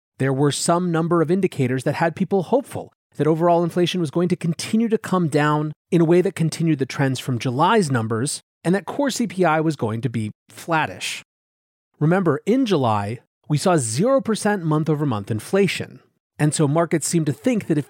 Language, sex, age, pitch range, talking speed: English, male, 30-49, 135-180 Hz, 190 wpm